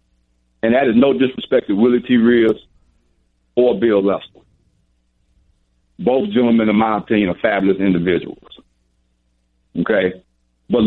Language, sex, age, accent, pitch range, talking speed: English, male, 60-79, American, 85-145 Hz, 120 wpm